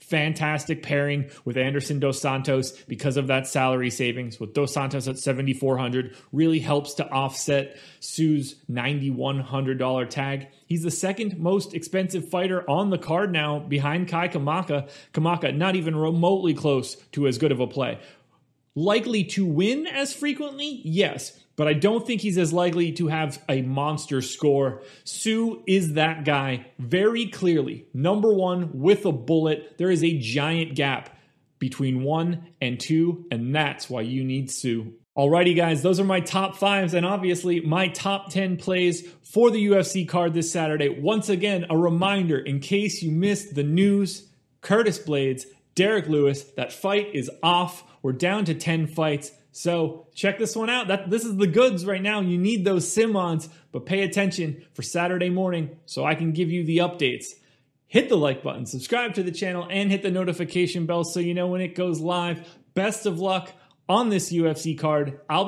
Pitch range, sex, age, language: 140-190 Hz, male, 30-49, English